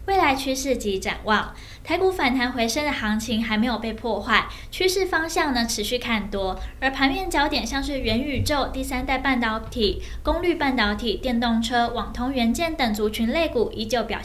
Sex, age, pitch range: female, 10-29, 215-270 Hz